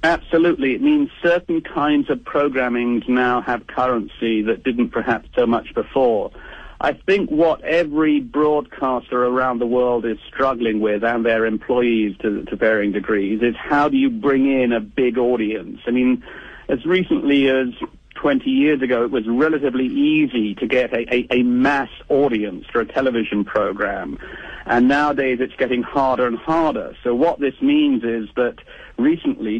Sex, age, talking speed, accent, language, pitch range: male, 50-69, 160 wpm, British, English, 120-140 Hz